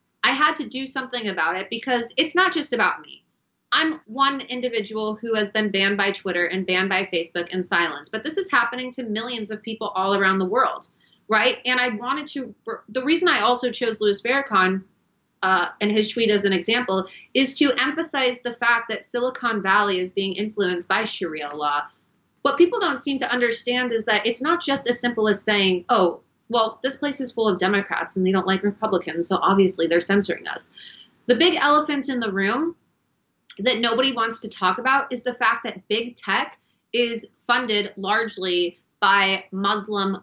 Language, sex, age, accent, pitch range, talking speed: English, female, 30-49, American, 195-250 Hz, 190 wpm